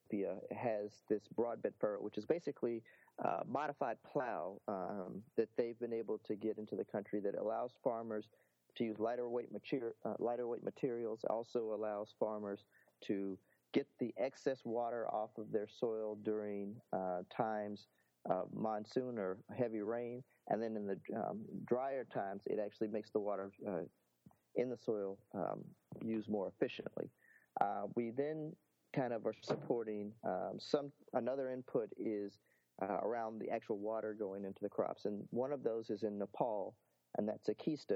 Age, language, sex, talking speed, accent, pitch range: 40-59, English, male, 160 wpm, American, 105-120 Hz